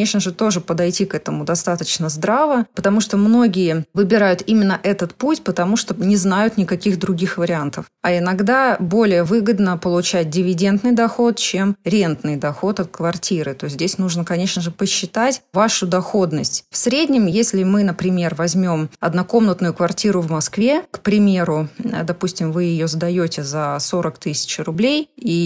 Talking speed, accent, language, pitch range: 150 wpm, native, Russian, 170-210 Hz